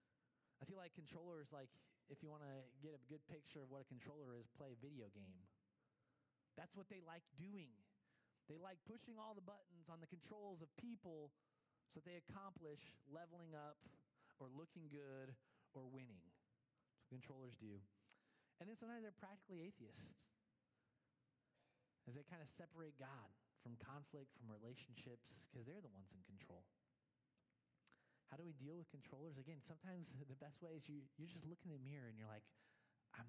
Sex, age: male, 30-49